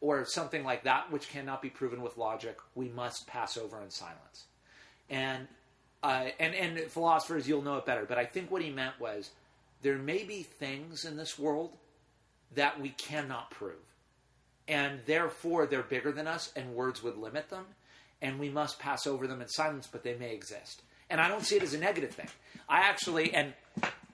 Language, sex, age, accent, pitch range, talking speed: English, male, 40-59, American, 130-165 Hz, 195 wpm